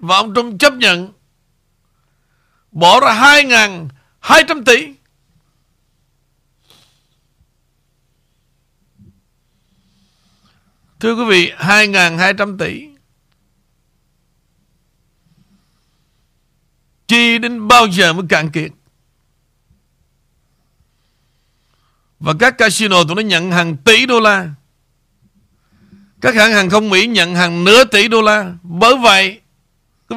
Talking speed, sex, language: 90 wpm, male, Vietnamese